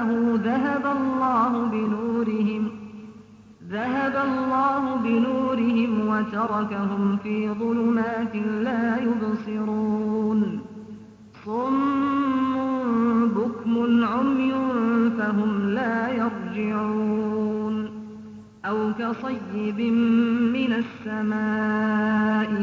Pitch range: 215-240 Hz